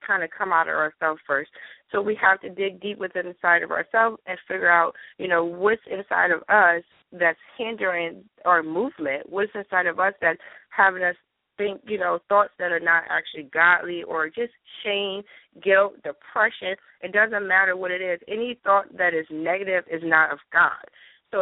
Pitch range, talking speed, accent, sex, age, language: 175-215 Hz, 190 wpm, American, female, 20-39, English